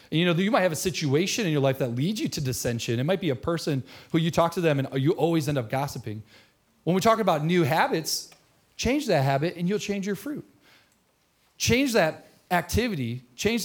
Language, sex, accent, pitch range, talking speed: English, male, American, 135-175 Hz, 215 wpm